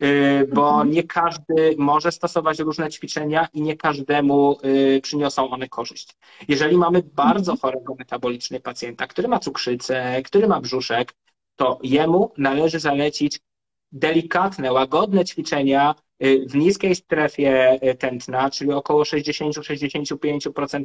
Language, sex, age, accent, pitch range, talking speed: Polish, male, 20-39, native, 140-175 Hz, 110 wpm